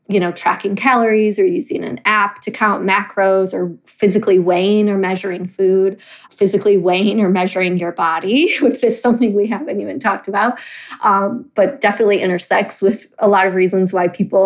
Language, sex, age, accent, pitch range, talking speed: English, female, 20-39, American, 190-230 Hz, 175 wpm